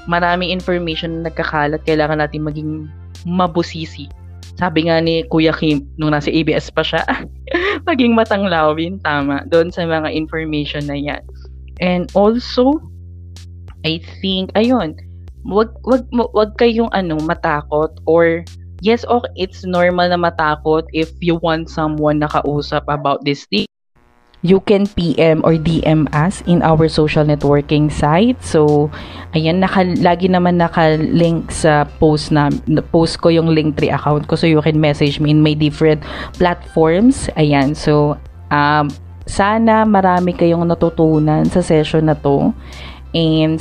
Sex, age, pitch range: female, 20-39, 150-175 Hz